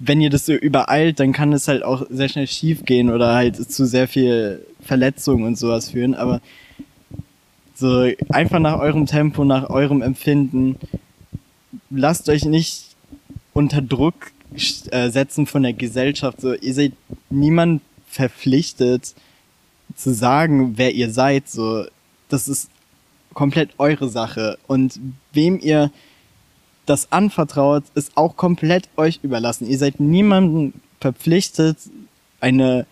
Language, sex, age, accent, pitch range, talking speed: German, male, 20-39, German, 125-145 Hz, 130 wpm